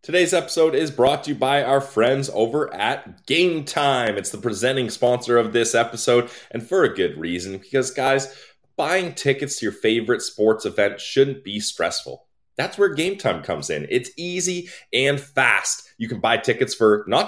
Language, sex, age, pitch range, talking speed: English, male, 20-39, 105-140 Hz, 185 wpm